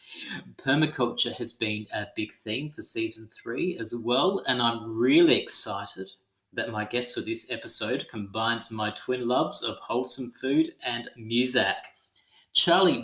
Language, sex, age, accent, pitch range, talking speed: English, male, 30-49, Australian, 115-130 Hz, 145 wpm